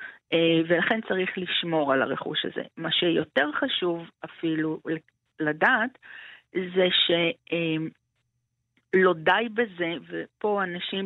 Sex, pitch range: female, 155-195 Hz